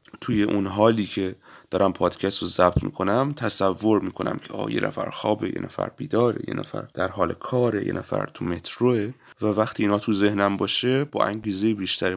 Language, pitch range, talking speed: Persian, 90-115 Hz, 185 wpm